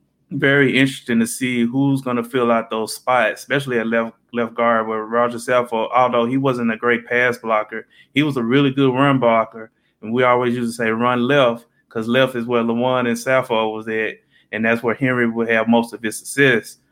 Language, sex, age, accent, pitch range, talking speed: English, male, 20-39, American, 115-125 Hz, 215 wpm